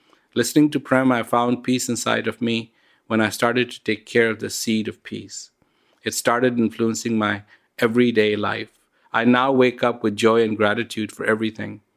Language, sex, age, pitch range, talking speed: English, male, 50-69, 110-130 Hz, 180 wpm